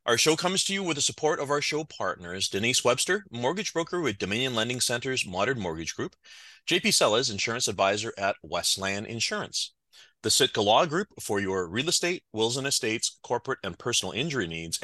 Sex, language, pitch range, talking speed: male, English, 105-145 Hz, 185 wpm